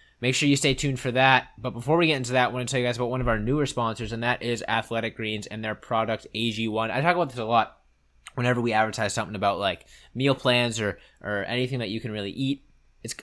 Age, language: 20-39, English